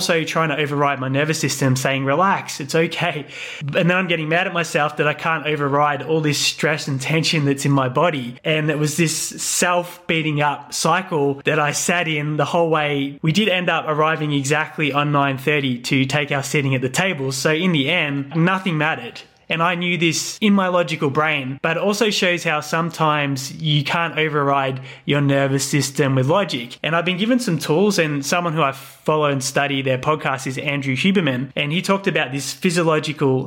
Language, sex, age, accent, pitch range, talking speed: English, male, 20-39, Australian, 140-165 Hz, 200 wpm